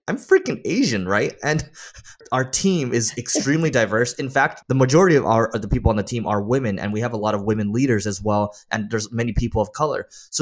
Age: 20-39